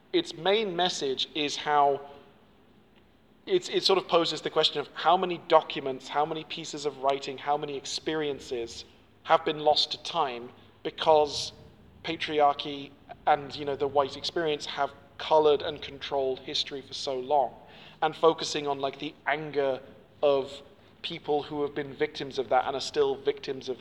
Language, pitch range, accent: English, 140-165 Hz, British